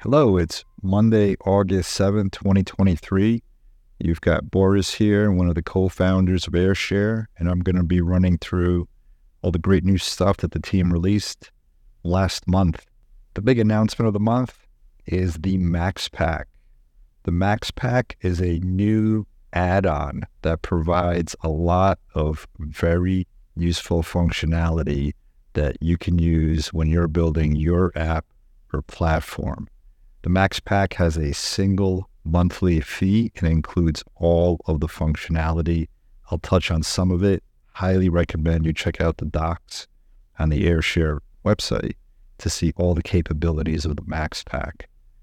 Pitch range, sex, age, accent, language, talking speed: 80-95 Hz, male, 50-69, American, English, 140 wpm